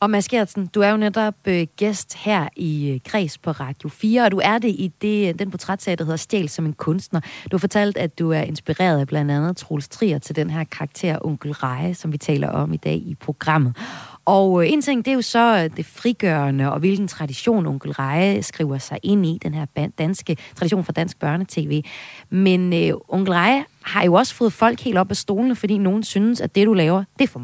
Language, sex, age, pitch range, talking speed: Danish, female, 30-49, 150-200 Hz, 230 wpm